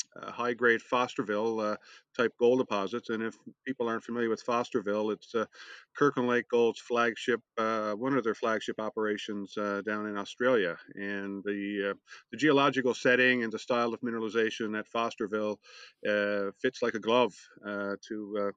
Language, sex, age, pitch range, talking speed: English, male, 50-69, 105-120 Hz, 160 wpm